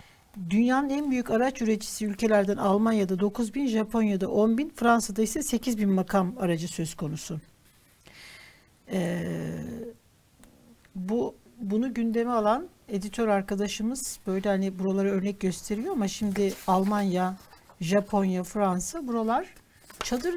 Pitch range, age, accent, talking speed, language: 190-255 Hz, 60-79, native, 115 wpm, Turkish